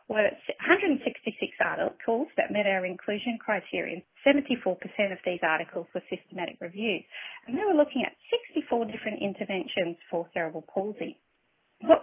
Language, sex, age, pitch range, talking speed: English, female, 30-49, 185-275 Hz, 140 wpm